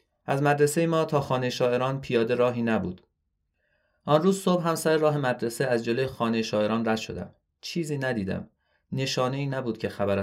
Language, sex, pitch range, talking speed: Persian, male, 100-130 Hz, 165 wpm